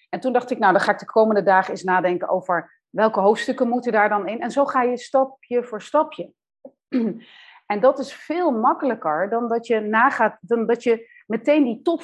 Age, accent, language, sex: 40-59, Dutch, Dutch, female